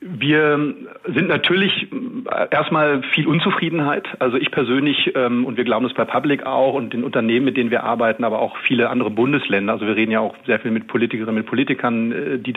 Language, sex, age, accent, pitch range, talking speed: German, male, 40-59, German, 115-135 Hz, 190 wpm